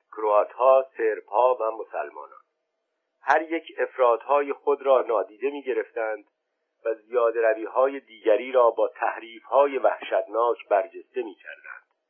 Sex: male